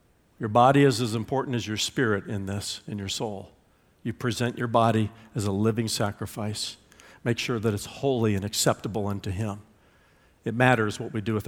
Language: English